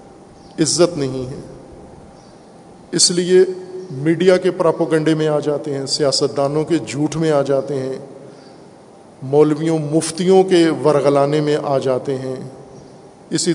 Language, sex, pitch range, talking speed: Urdu, male, 145-180 Hz, 130 wpm